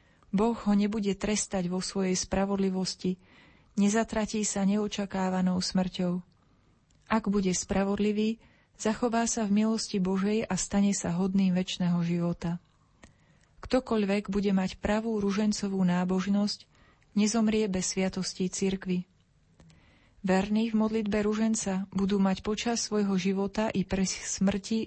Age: 30-49